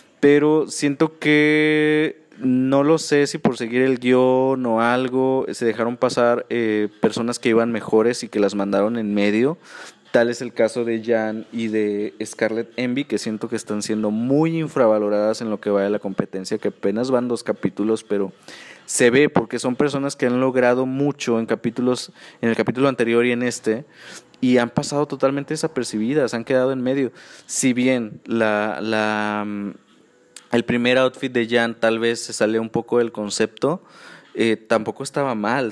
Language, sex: Spanish, male